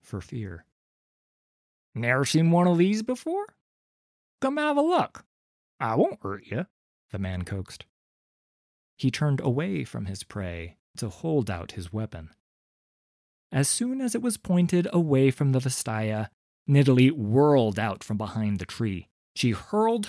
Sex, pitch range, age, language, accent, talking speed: male, 100-155 Hz, 30-49, English, American, 145 wpm